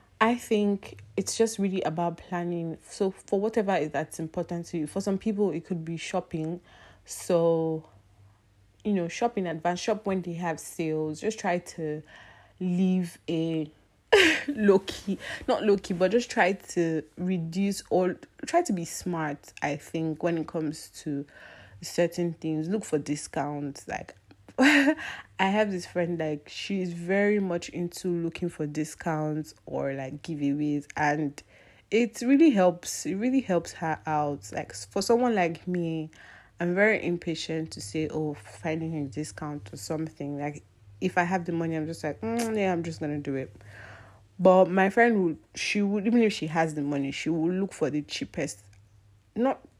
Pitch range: 150-195 Hz